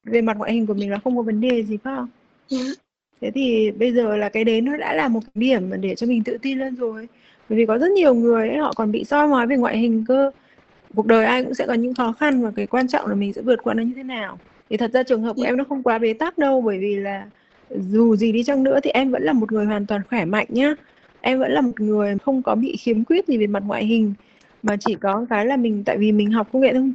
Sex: female